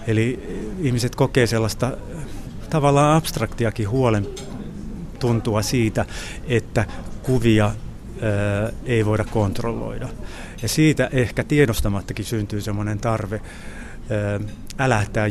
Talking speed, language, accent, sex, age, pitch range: 85 wpm, Finnish, native, male, 30-49, 110-125 Hz